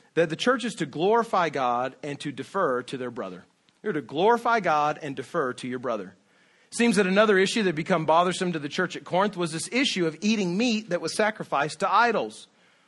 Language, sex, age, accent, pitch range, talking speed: English, male, 40-59, American, 155-210 Hz, 210 wpm